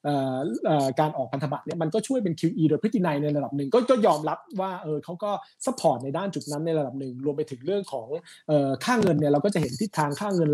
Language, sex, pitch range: Thai, male, 145-190 Hz